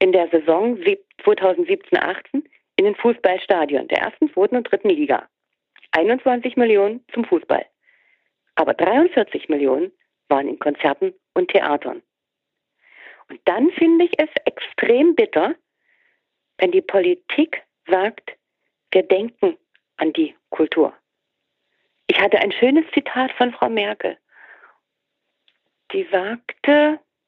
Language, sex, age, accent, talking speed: German, female, 40-59, German, 115 wpm